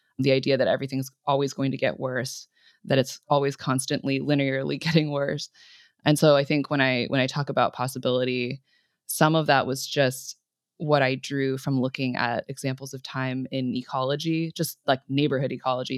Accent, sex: American, female